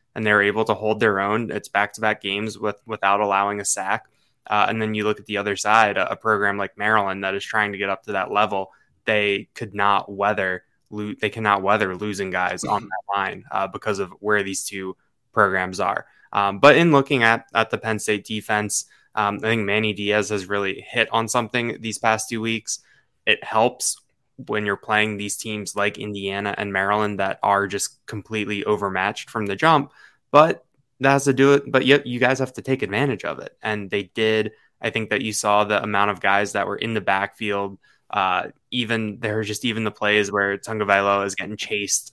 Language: English